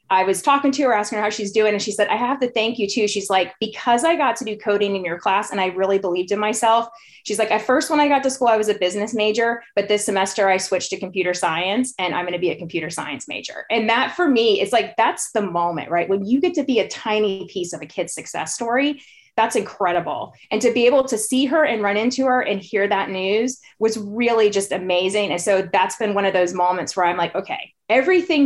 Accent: American